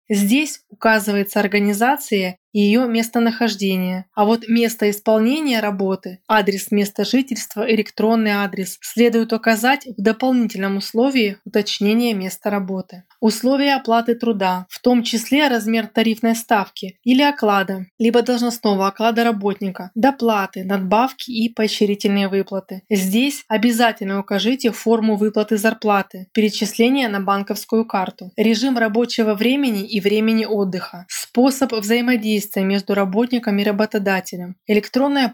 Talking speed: 115 wpm